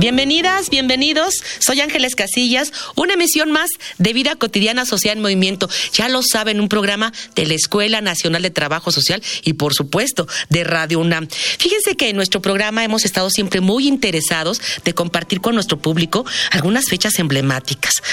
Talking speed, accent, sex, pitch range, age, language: 165 wpm, Mexican, female, 155-215 Hz, 40-59, Spanish